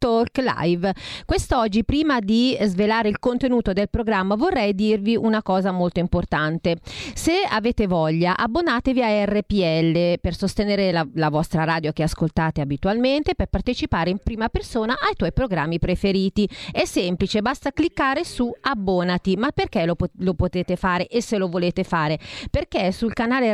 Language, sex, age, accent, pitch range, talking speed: Italian, female, 40-59, native, 180-240 Hz, 155 wpm